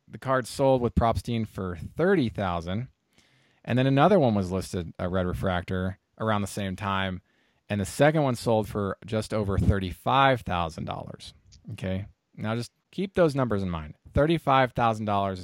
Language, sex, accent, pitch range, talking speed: English, male, American, 95-115 Hz, 150 wpm